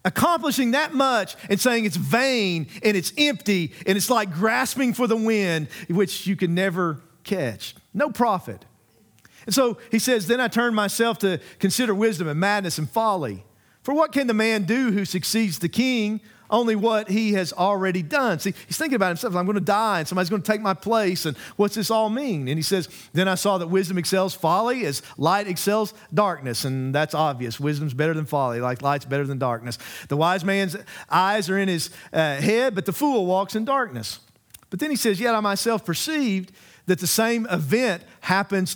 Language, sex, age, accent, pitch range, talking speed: English, male, 40-59, American, 180-230 Hz, 200 wpm